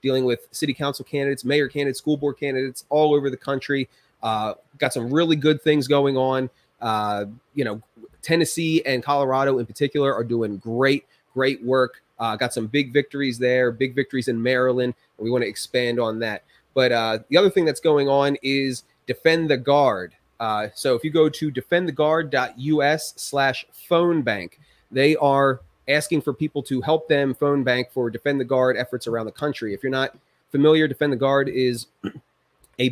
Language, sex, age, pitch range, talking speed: English, male, 30-49, 120-145 Hz, 185 wpm